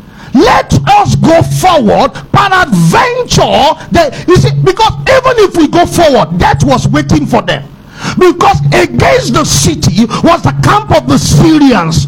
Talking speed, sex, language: 145 wpm, male, English